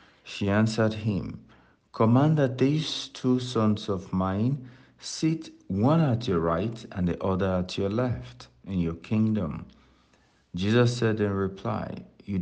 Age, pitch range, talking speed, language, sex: 60-79, 90-120 Hz, 140 wpm, English, male